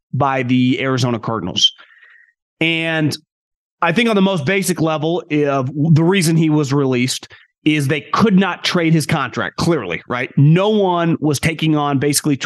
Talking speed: 160 wpm